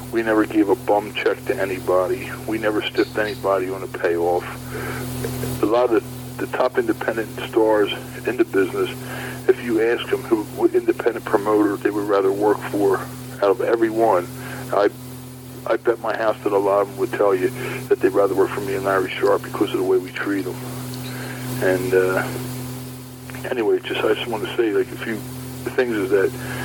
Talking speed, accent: 195 wpm, American